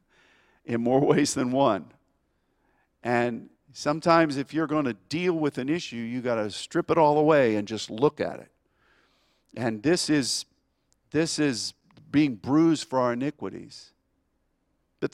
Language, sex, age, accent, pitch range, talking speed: English, male, 50-69, American, 120-160 Hz, 145 wpm